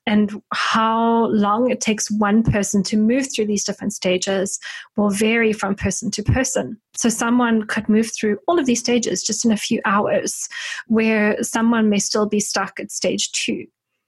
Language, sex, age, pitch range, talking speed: English, female, 20-39, 205-240 Hz, 180 wpm